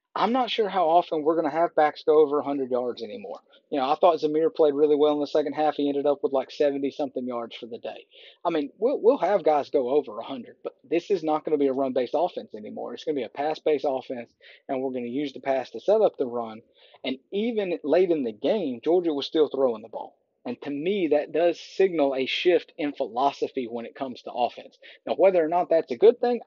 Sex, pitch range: male, 140-195 Hz